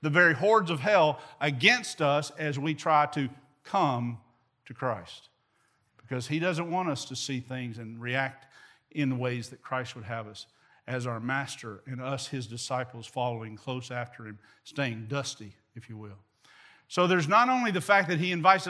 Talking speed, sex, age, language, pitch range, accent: 185 wpm, male, 50-69, English, 130-175 Hz, American